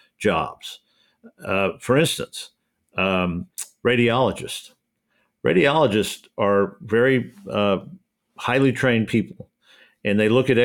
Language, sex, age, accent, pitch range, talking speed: English, male, 50-69, American, 100-125 Hz, 95 wpm